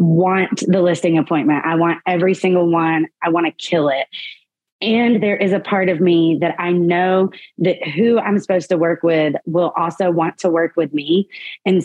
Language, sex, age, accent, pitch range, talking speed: English, female, 20-39, American, 170-220 Hz, 200 wpm